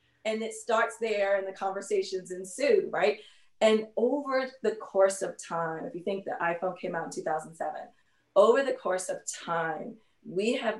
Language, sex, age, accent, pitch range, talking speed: English, female, 30-49, American, 170-230 Hz, 170 wpm